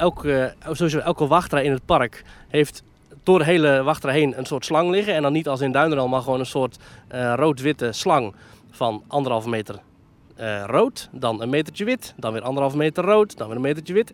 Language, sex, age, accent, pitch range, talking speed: Dutch, male, 20-39, Dutch, 115-160 Hz, 205 wpm